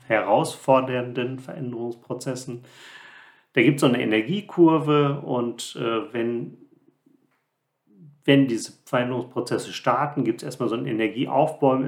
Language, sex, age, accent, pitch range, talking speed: German, male, 40-59, German, 120-145 Hz, 105 wpm